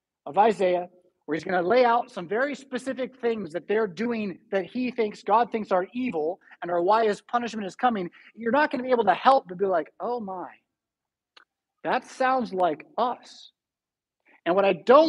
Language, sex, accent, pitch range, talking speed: English, male, American, 180-240 Hz, 200 wpm